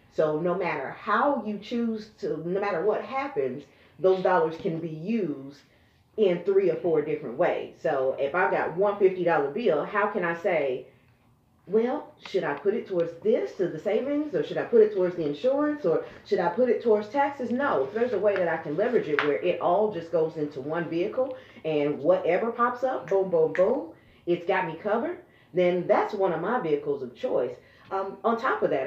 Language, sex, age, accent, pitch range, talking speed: English, female, 40-59, American, 165-235 Hz, 210 wpm